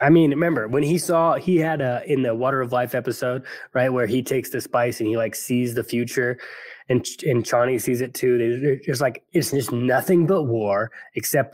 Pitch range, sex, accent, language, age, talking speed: 110-145 Hz, male, American, English, 20-39, 215 wpm